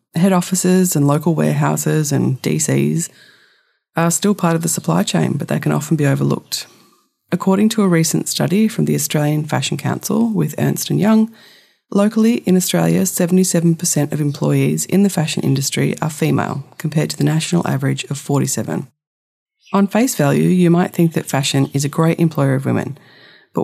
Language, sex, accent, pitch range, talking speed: English, female, Australian, 145-185 Hz, 170 wpm